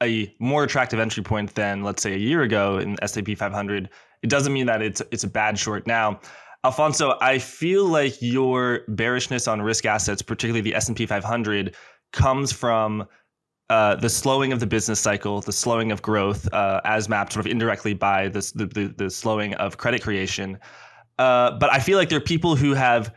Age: 20-39